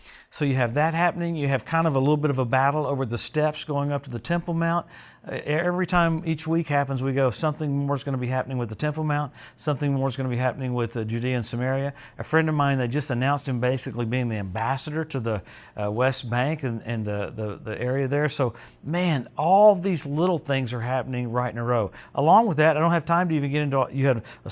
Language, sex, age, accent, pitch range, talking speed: English, male, 50-69, American, 125-160 Hz, 255 wpm